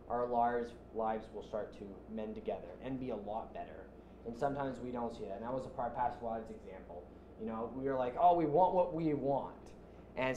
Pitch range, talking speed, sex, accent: 110-140 Hz, 225 wpm, male, American